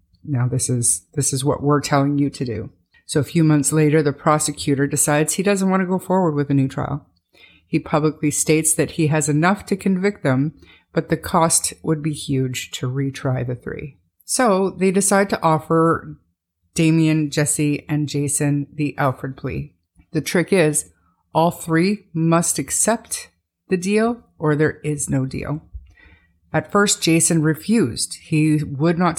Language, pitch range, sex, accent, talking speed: English, 140-165 Hz, female, American, 170 wpm